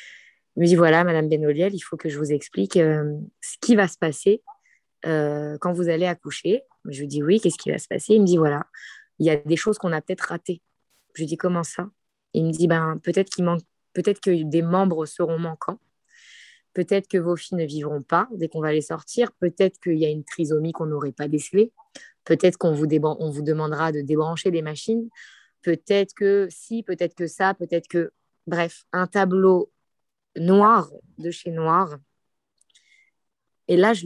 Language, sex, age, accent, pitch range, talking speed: French, female, 20-39, French, 165-205 Hz, 210 wpm